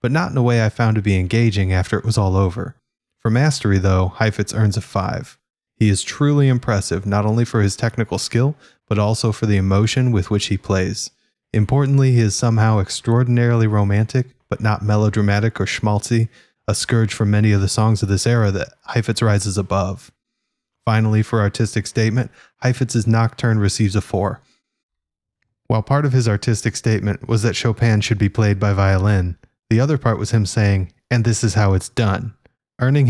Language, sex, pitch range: English, male, 100-120 Hz